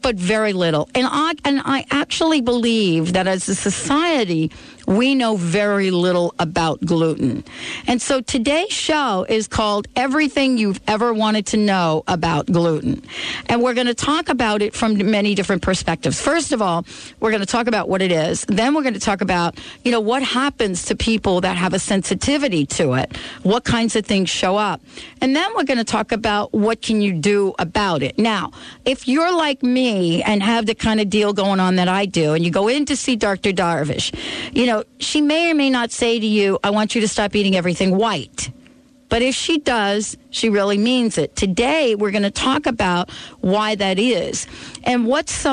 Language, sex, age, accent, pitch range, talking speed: English, female, 50-69, American, 185-250 Hz, 200 wpm